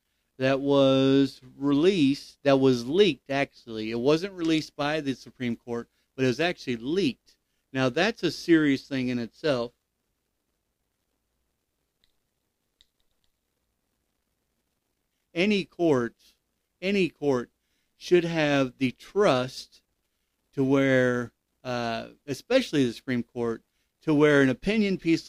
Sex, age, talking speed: male, 50-69, 110 wpm